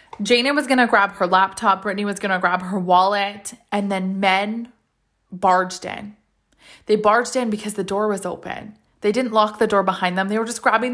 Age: 20-39